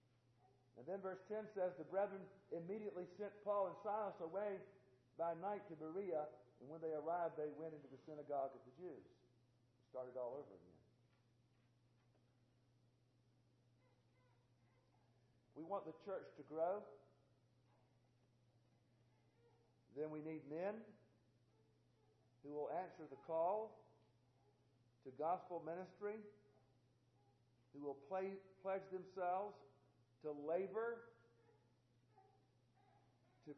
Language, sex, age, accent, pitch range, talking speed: English, male, 50-69, American, 120-195 Hz, 105 wpm